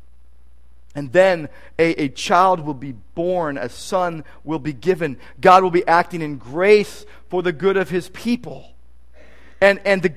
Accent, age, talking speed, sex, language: American, 50-69, 165 wpm, male, English